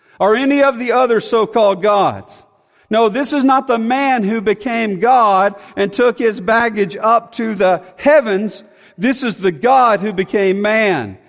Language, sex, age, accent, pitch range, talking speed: English, male, 50-69, American, 205-260 Hz, 165 wpm